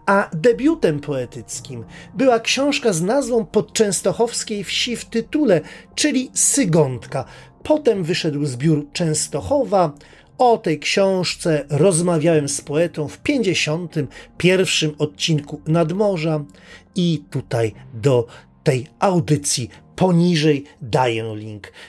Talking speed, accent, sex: 95 wpm, native, male